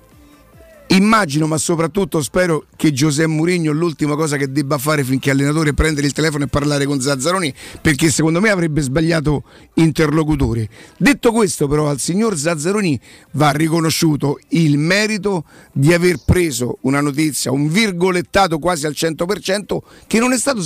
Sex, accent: male, native